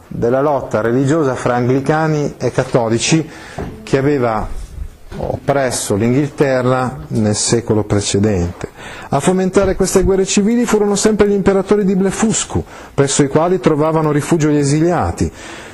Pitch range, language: 120-180 Hz, Italian